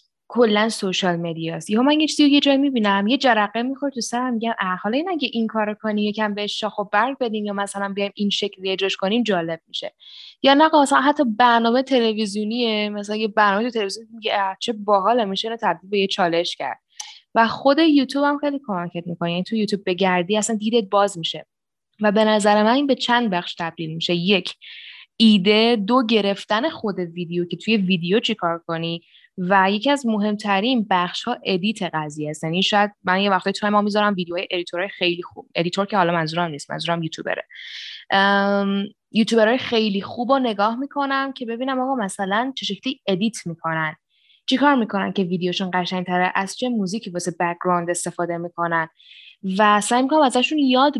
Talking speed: 175 wpm